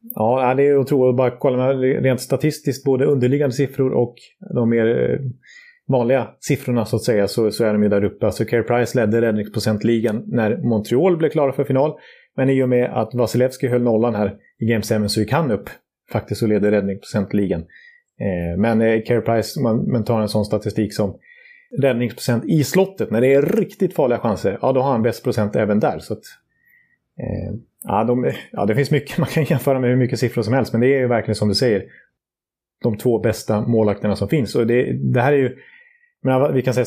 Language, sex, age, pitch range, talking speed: Swedish, male, 30-49, 110-135 Hz, 210 wpm